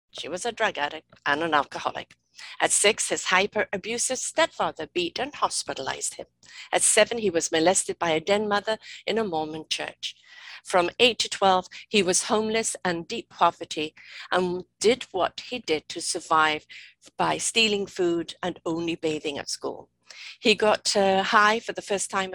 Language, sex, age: English, female, 50-69